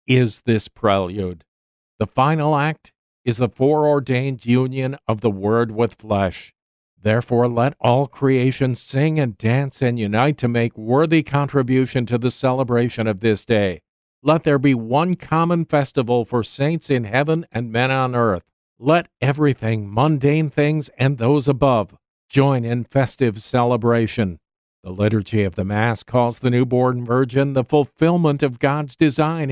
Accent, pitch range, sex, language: American, 115-145 Hz, male, English